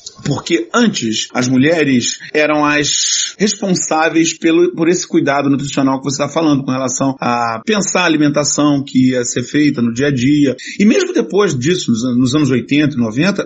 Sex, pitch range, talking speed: male, 135-205 Hz, 175 wpm